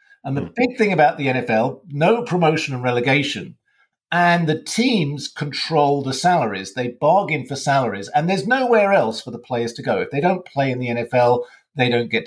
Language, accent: English, British